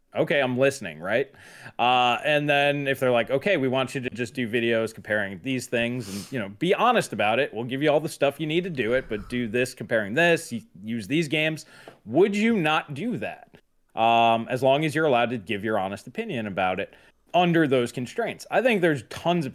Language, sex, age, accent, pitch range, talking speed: English, male, 20-39, American, 120-155 Hz, 225 wpm